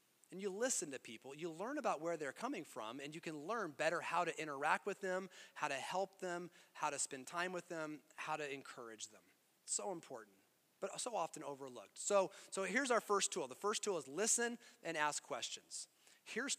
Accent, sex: American, male